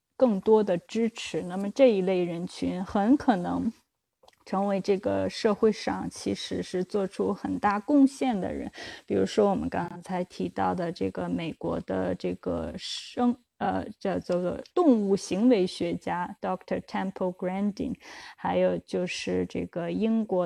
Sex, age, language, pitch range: female, 20-39, Chinese, 185-245 Hz